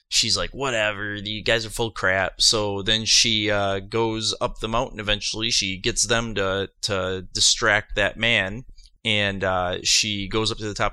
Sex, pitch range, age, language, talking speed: male, 105-135 Hz, 30-49, English, 185 wpm